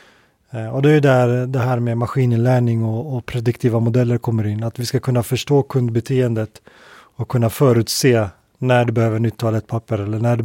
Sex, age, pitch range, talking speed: male, 30-49, 115-130 Hz, 180 wpm